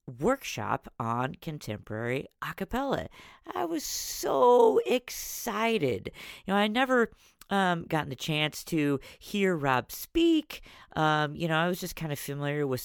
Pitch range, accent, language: 125-175 Hz, American, English